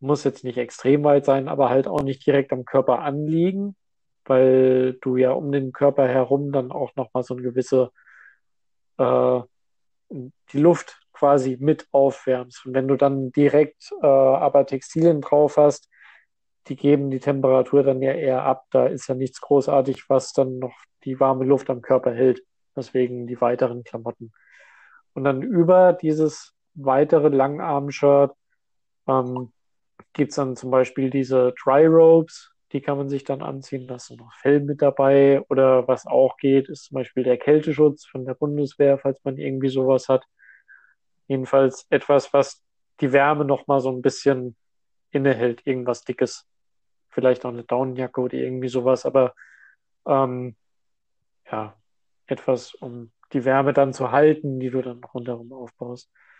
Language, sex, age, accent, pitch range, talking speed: German, male, 40-59, German, 125-140 Hz, 155 wpm